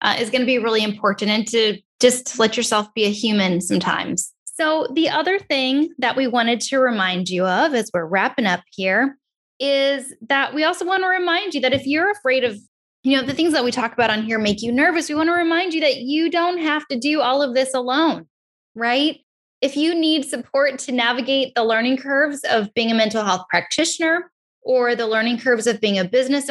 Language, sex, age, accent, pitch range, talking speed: English, female, 10-29, American, 220-290 Hz, 220 wpm